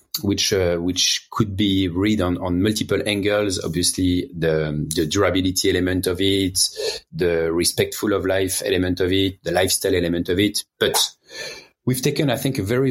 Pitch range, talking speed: 95-130 Hz, 165 wpm